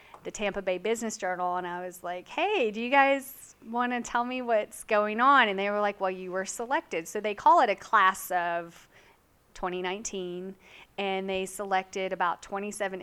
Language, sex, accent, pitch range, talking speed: English, female, American, 180-205 Hz, 185 wpm